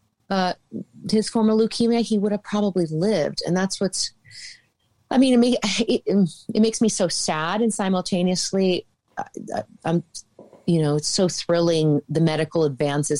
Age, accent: 30-49, American